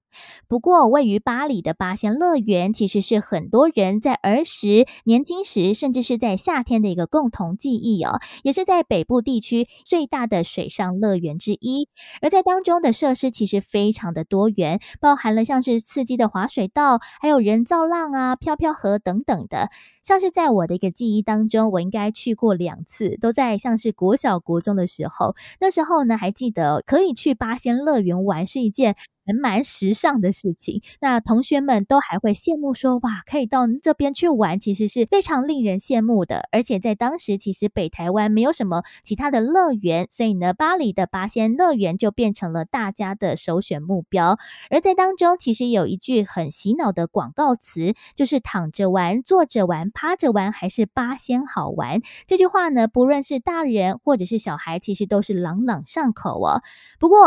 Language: Chinese